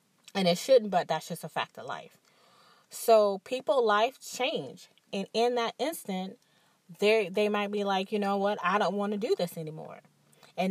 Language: English